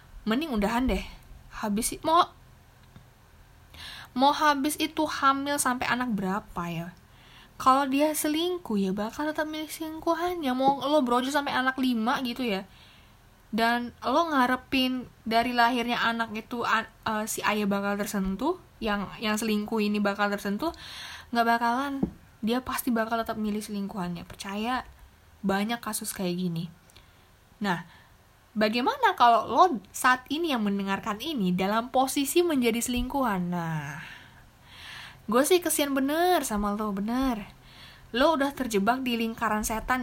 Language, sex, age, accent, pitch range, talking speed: Indonesian, female, 10-29, native, 200-270 Hz, 130 wpm